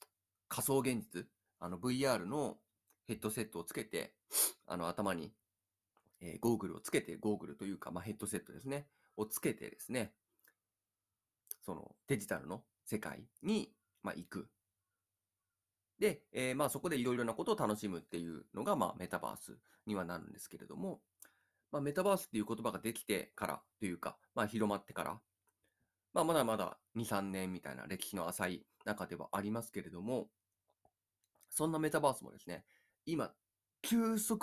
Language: Japanese